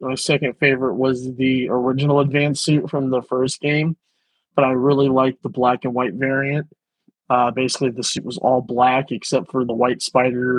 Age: 20-39